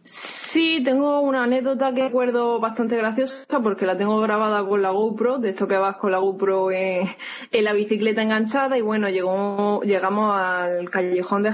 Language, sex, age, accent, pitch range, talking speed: Spanish, female, 20-39, Spanish, 180-235 Hz, 175 wpm